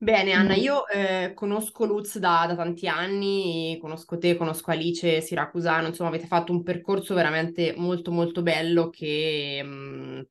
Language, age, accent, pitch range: Italian, 20-39, native, 160-180 Hz